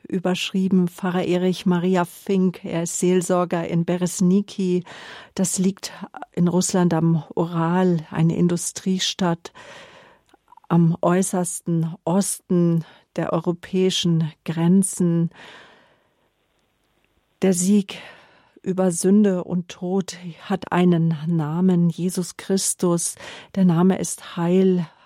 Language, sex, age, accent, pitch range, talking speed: German, female, 50-69, German, 175-195 Hz, 95 wpm